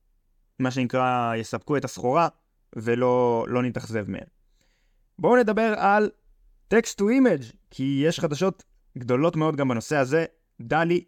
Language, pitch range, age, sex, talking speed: Hebrew, 115-145 Hz, 20-39, male, 130 wpm